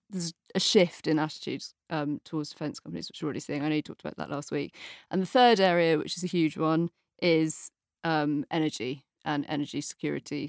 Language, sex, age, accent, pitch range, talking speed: English, female, 30-49, British, 150-170 Hz, 205 wpm